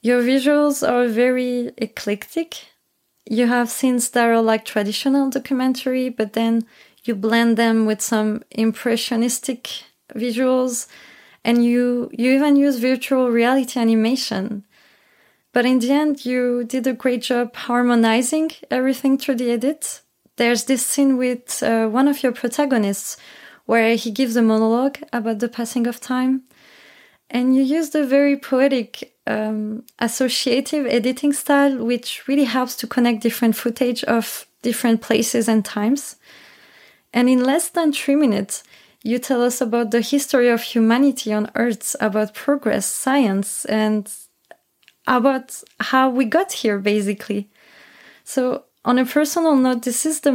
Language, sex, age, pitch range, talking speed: English, female, 20-39, 230-265 Hz, 140 wpm